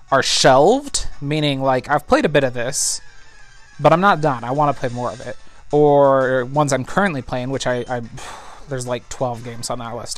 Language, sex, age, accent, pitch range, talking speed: English, male, 30-49, American, 130-160 Hz, 210 wpm